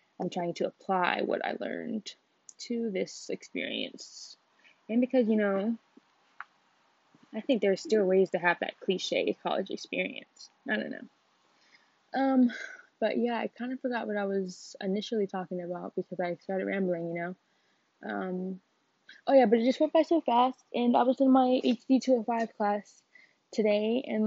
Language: English